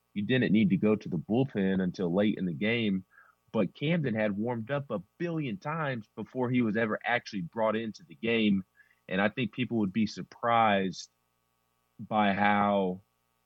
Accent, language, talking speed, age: American, English, 175 wpm, 30-49